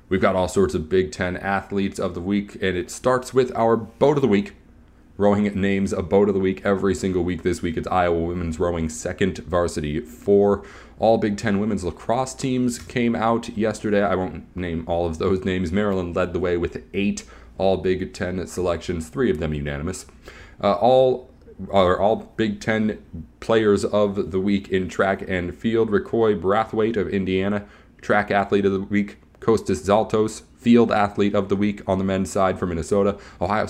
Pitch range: 90-110 Hz